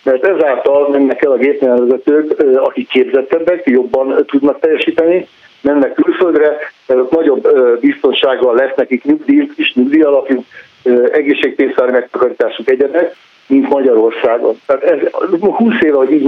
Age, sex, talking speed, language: 50-69, male, 120 wpm, Hungarian